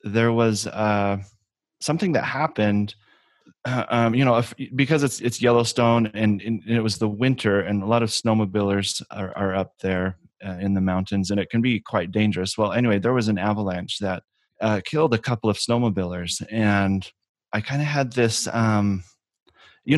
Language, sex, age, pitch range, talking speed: English, male, 30-49, 95-115 Hz, 185 wpm